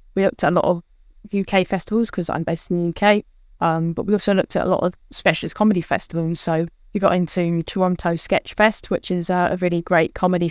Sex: female